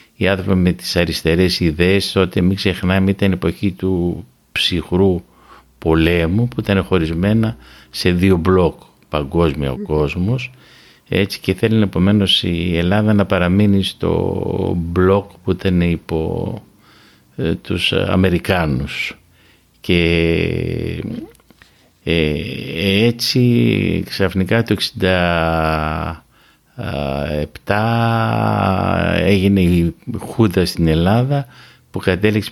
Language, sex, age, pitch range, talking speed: Greek, male, 50-69, 85-105 Hz, 100 wpm